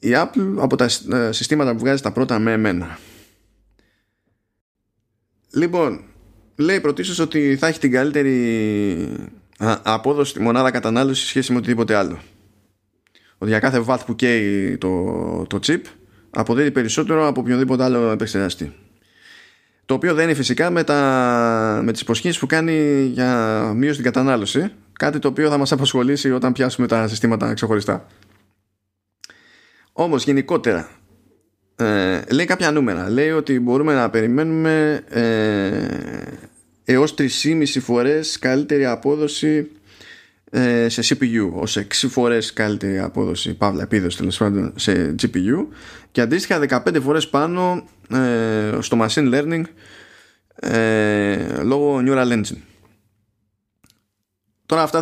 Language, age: Greek, 20-39